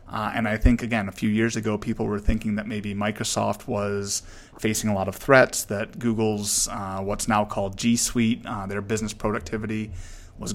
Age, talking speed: 30-49, 195 wpm